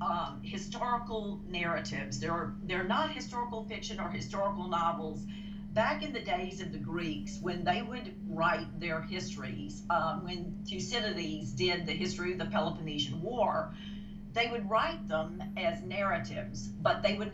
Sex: female